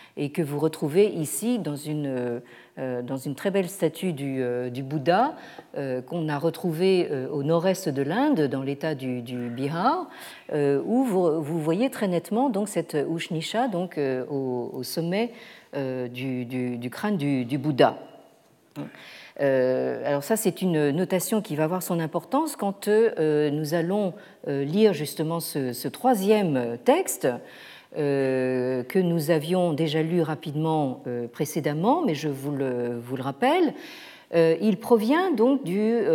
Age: 50-69